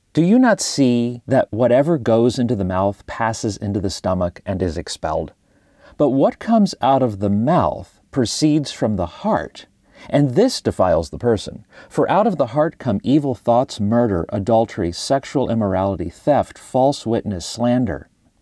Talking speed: 160 wpm